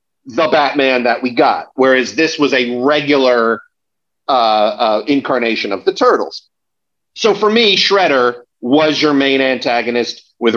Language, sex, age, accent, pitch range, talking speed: English, male, 40-59, American, 125-160 Hz, 140 wpm